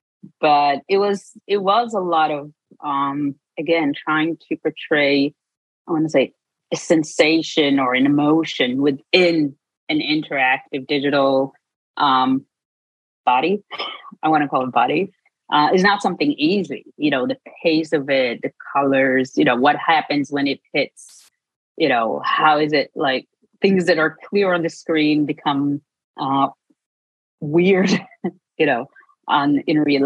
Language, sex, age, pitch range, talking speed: English, female, 30-49, 140-170 Hz, 150 wpm